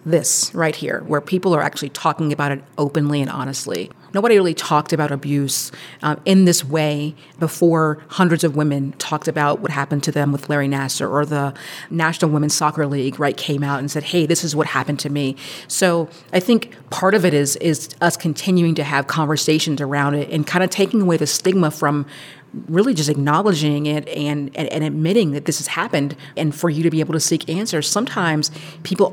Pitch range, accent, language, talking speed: 145-180 Hz, American, English, 200 wpm